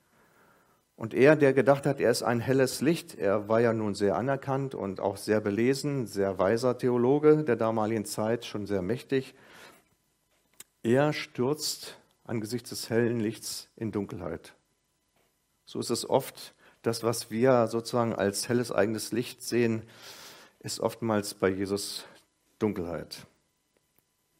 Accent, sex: German, male